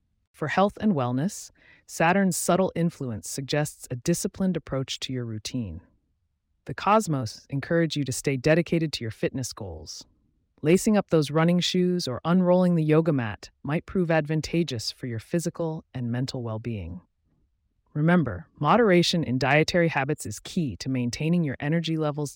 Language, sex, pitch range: English, female, 115-165 Hz